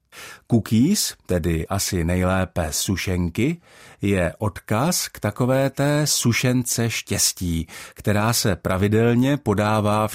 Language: Czech